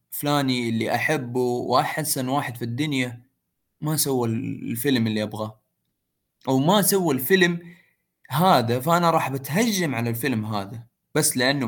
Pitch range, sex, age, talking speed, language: 120-175 Hz, male, 20-39, 130 wpm, Arabic